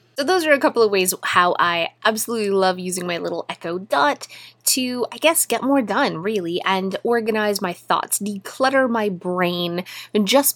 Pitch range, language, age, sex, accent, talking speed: 170-220 Hz, English, 20-39, female, American, 175 wpm